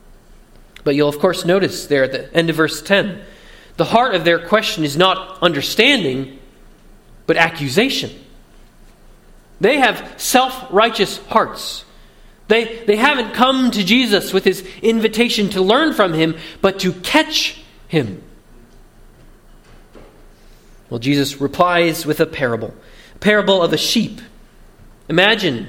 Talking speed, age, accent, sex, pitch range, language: 130 wpm, 30-49, American, male, 175-235 Hz, English